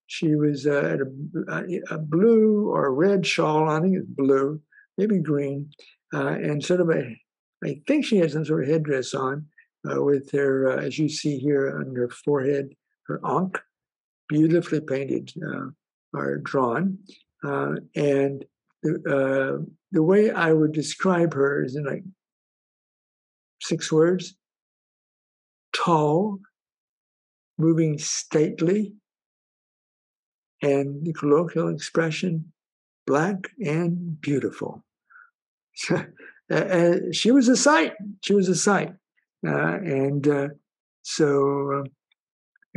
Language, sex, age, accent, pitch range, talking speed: English, male, 60-79, American, 145-185 Hz, 125 wpm